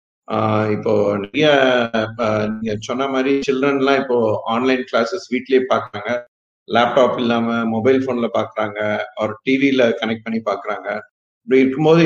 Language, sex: Tamil, male